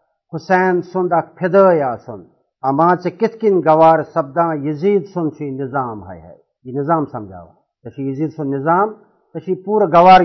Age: 50-69